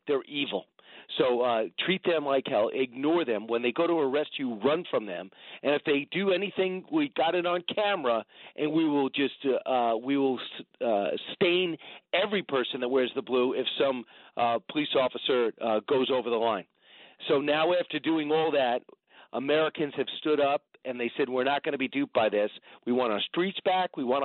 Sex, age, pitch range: male, 40-59, 130-170 Hz